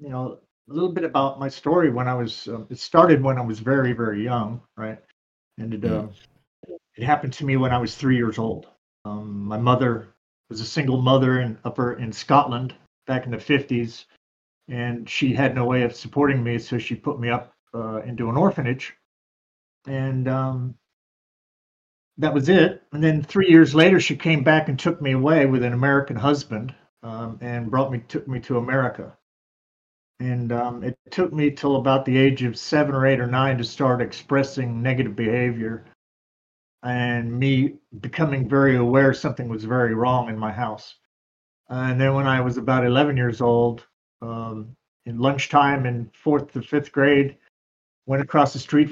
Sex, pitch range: male, 120-140 Hz